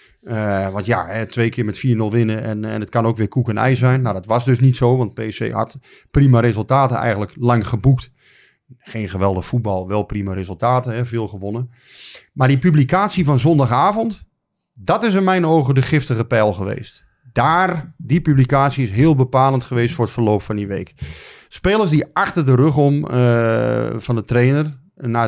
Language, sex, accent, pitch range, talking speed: Dutch, male, Dutch, 110-135 Hz, 190 wpm